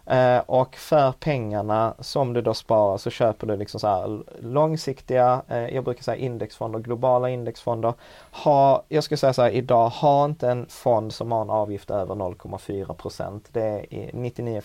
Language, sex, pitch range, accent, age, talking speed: Swedish, male, 105-125 Hz, native, 30-49, 165 wpm